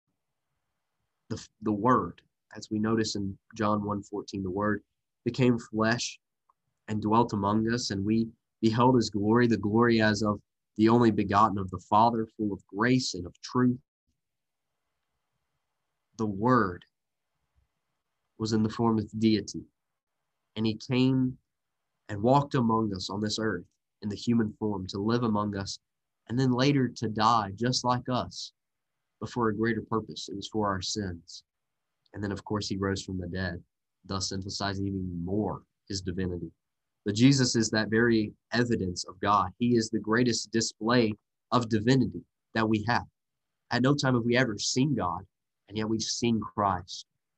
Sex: male